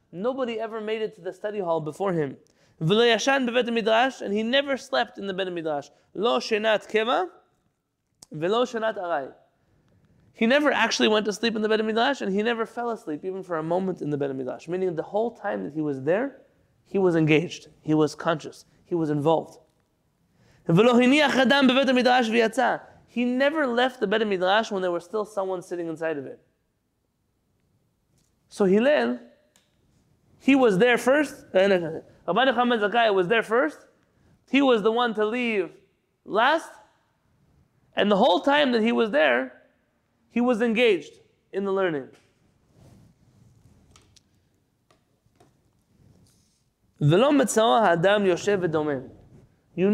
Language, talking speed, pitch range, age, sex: English, 135 wpm, 165-240 Hz, 20-39, male